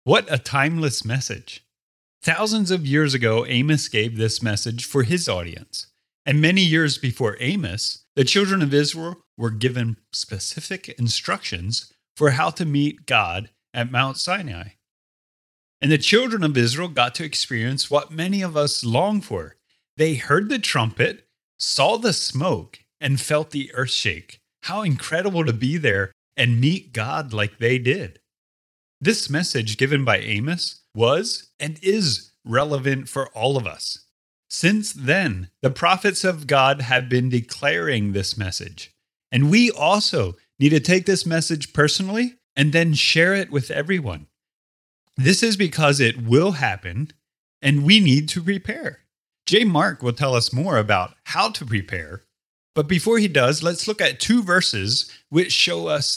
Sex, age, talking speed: male, 30-49, 155 wpm